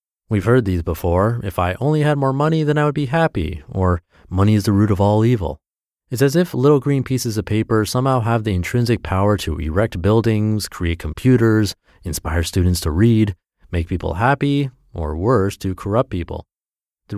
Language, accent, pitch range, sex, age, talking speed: English, American, 90-120 Hz, male, 30-49, 190 wpm